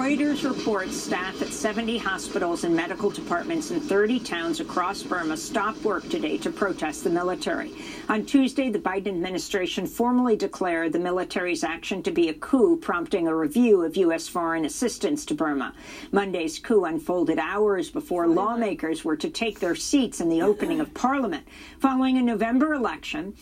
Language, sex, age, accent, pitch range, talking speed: English, female, 50-69, American, 205-315 Hz, 165 wpm